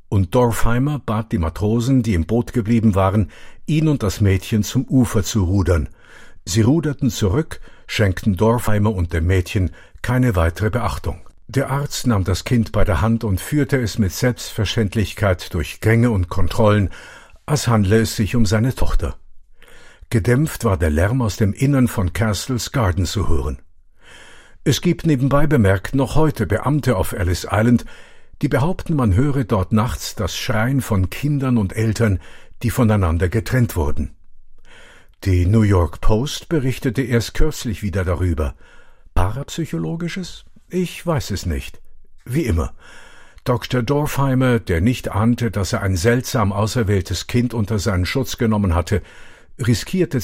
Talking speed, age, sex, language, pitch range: 150 wpm, 50-69, male, German, 95-125 Hz